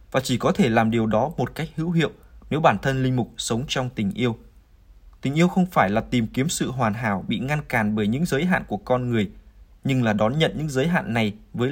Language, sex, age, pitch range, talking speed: Vietnamese, male, 20-39, 115-145 Hz, 250 wpm